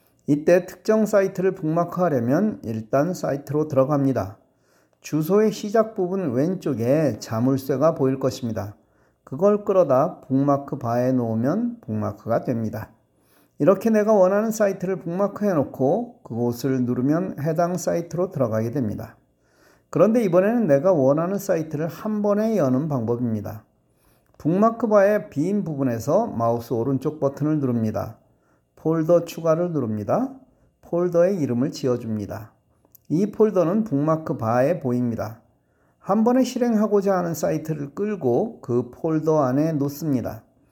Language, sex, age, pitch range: Korean, male, 40-59, 125-190 Hz